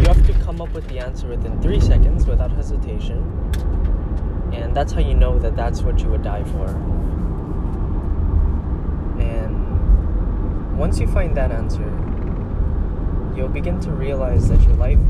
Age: 20-39